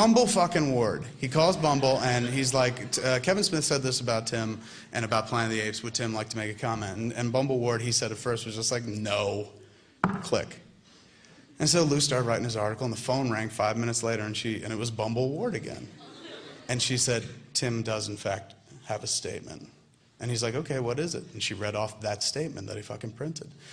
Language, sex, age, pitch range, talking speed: English, male, 30-49, 110-140 Hz, 230 wpm